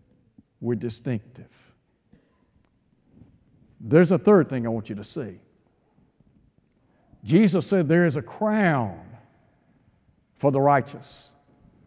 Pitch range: 140-180 Hz